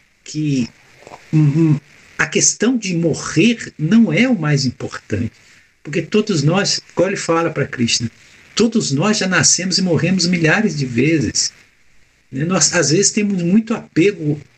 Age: 60-79